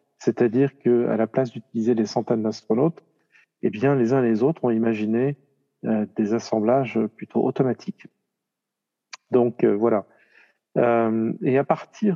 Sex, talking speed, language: male, 150 wpm, French